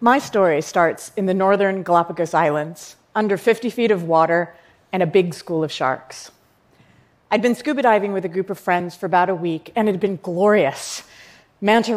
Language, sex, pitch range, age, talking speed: Arabic, female, 175-210 Hz, 40-59, 190 wpm